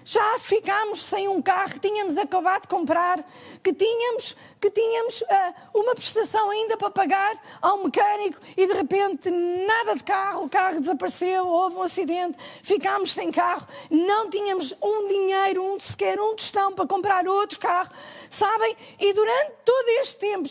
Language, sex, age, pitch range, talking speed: Portuguese, female, 20-39, 340-420 Hz, 160 wpm